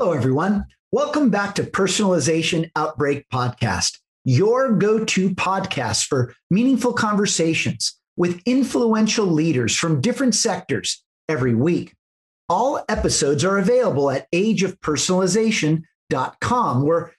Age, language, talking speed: 50-69, English, 105 wpm